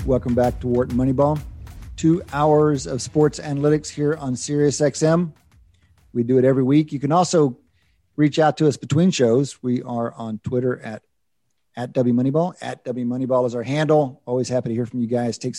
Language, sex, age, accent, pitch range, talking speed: English, male, 50-69, American, 125-155 Hz, 175 wpm